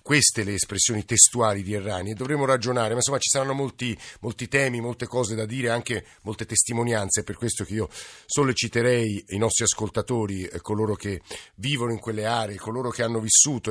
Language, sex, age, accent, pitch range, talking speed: Italian, male, 50-69, native, 95-120 Hz, 185 wpm